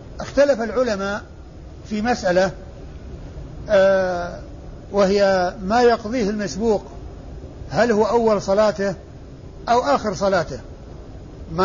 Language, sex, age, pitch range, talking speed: Arabic, male, 60-79, 195-235 Hz, 95 wpm